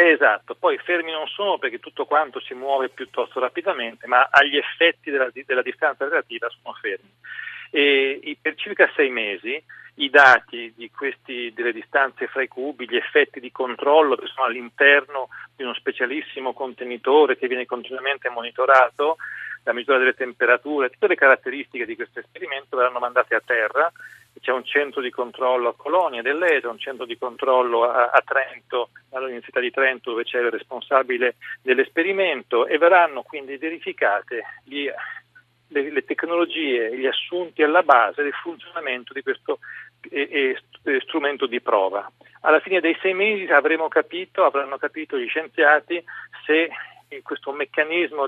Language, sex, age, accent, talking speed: Italian, male, 40-59, native, 150 wpm